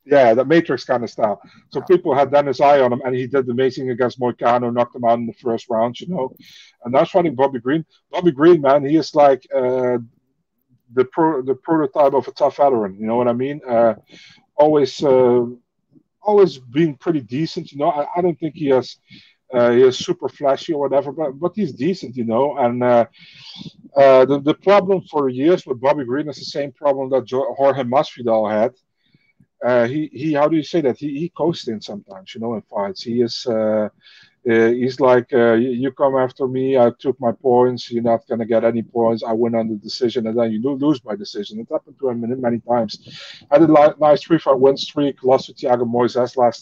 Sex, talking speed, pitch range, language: male, 220 wpm, 120-150 Hz, English